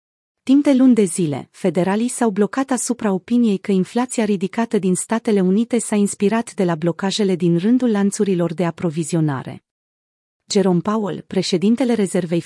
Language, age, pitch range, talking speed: Romanian, 30-49, 180-225 Hz, 145 wpm